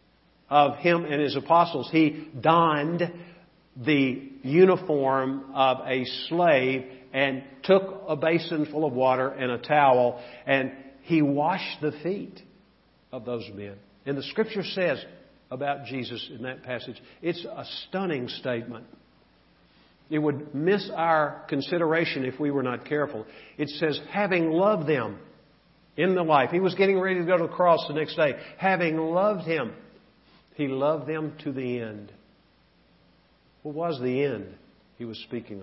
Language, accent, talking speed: English, American, 150 wpm